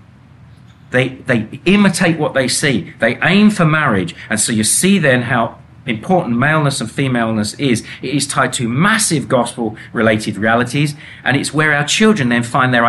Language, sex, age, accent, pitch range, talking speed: English, male, 40-59, British, 115-145 Hz, 170 wpm